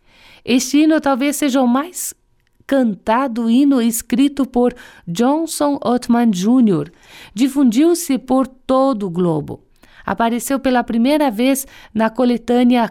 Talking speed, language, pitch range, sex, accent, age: 110 wpm, Portuguese, 205-265 Hz, female, Brazilian, 50-69